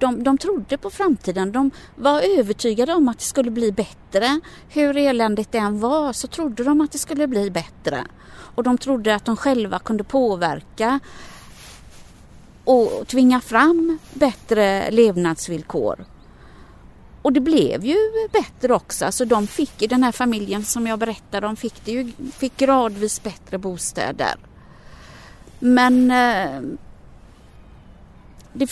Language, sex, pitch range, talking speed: Swedish, female, 210-265 Hz, 135 wpm